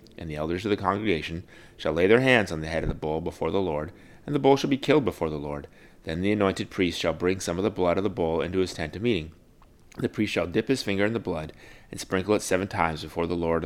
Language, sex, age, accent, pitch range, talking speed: English, male, 30-49, American, 80-100 Hz, 275 wpm